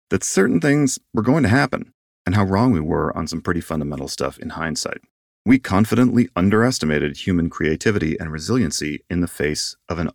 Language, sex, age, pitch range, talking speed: English, male, 40-59, 80-115 Hz, 185 wpm